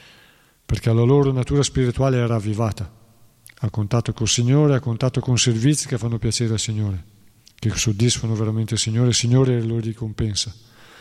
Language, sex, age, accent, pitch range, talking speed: Italian, male, 40-59, native, 110-135 Hz, 160 wpm